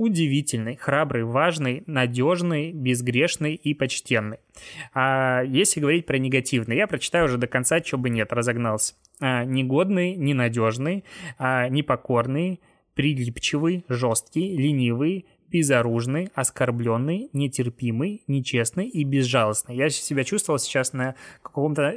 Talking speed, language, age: 110 wpm, Russian, 20-39